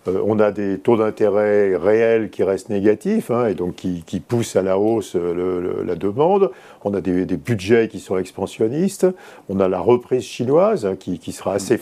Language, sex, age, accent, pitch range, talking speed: French, male, 50-69, French, 95-120 Hz, 200 wpm